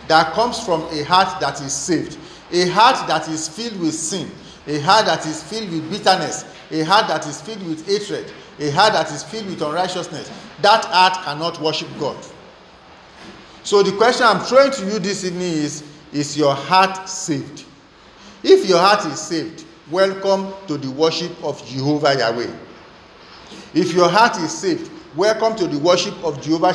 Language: English